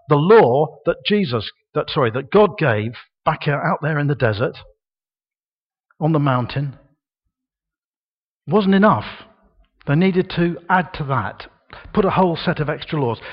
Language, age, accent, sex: English, 50-69, British, male